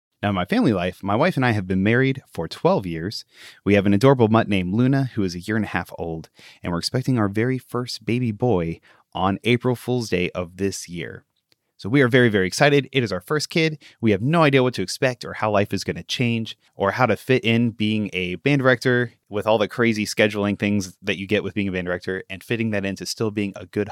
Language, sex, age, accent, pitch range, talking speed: English, male, 30-49, American, 95-125 Hz, 250 wpm